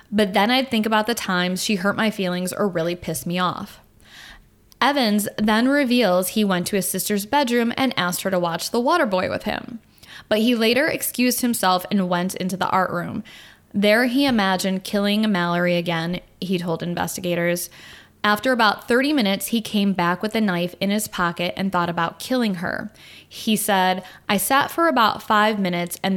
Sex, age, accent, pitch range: female, 10-29, American, 175-215 Hz